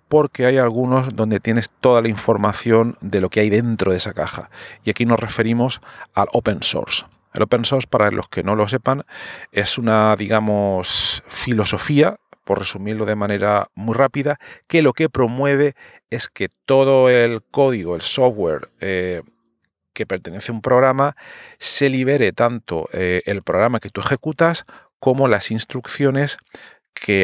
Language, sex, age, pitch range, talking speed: Spanish, male, 40-59, 105-130 Hz, 160 wpm